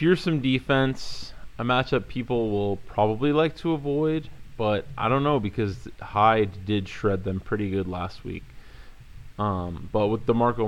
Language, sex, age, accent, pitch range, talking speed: English, male, 20-39, American, 105-135 Hz, 155 wpm